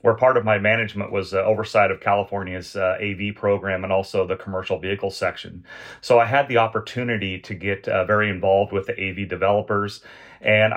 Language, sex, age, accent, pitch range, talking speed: English, male, 30-49, American, 95-110 Hz, 190 wpm